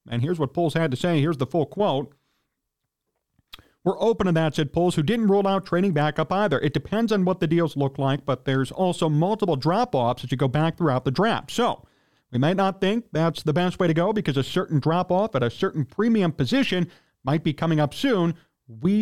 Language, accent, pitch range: English, American, 140-185 Hz